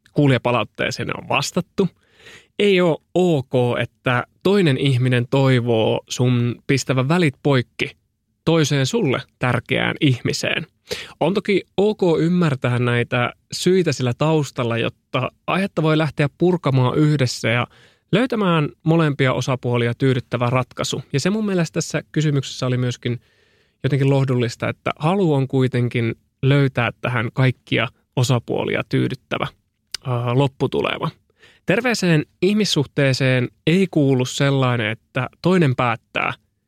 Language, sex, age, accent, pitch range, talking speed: Finnish, male, 20-39, native, 120-160 Hz, 105 wpm